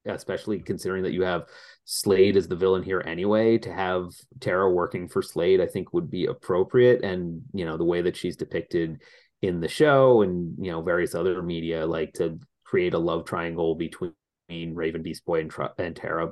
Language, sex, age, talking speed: English, male, 30-49, 190 wpm